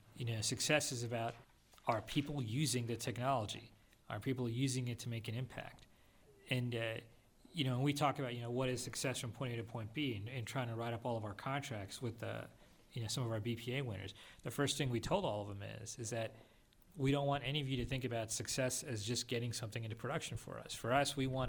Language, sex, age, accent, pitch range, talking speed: English, male, 40-59, American, 115-130 Hz, 250 wpm